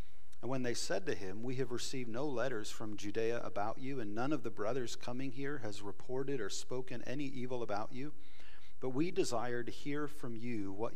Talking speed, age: 210 wpm, 40-59